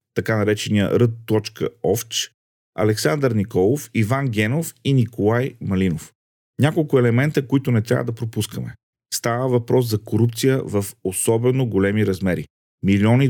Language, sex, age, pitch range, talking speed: Bulgarian, male, 40-59, 110-135 Hz, 120 wpm